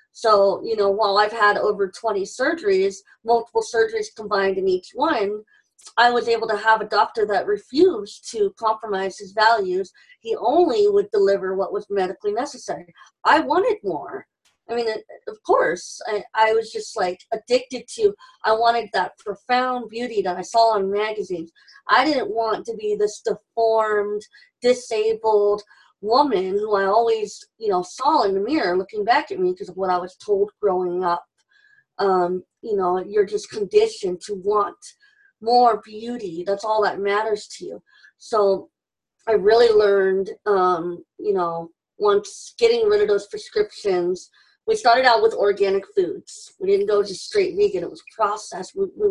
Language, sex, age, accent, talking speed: English, female, 30-49, American, 165 wpm